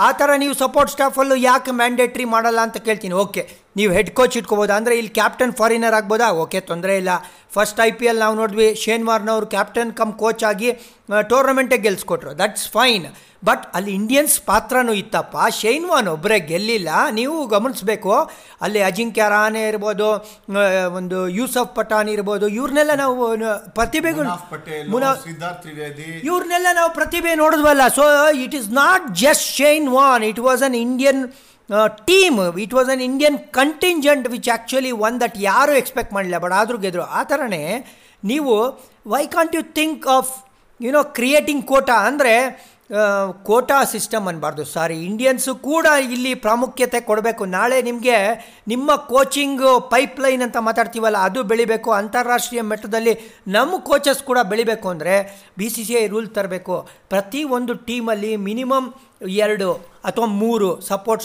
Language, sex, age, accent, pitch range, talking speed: Kannada, male, 50-69, native, 210-265 Hz, 140 wpm